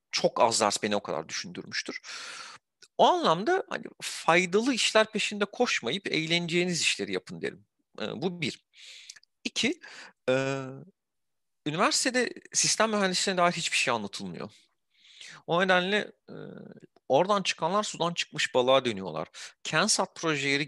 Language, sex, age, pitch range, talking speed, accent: Turkish, male, 40-59, 130-205 Hz, 120 wpm, native